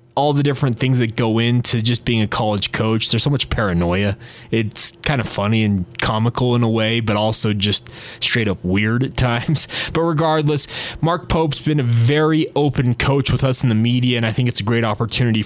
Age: 20-39